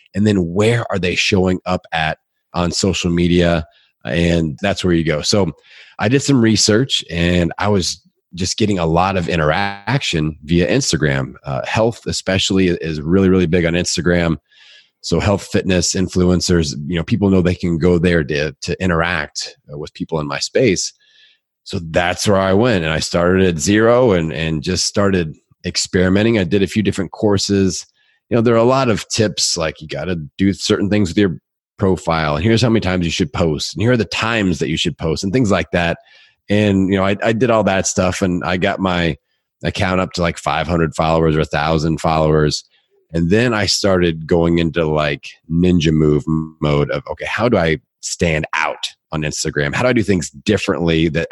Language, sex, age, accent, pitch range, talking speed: English, male, 30-49, American, 80-100 Hz, 200 wpm